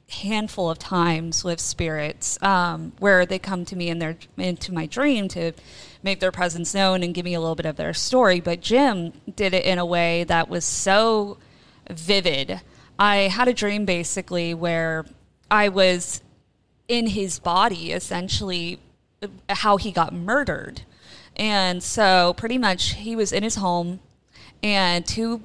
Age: 20-39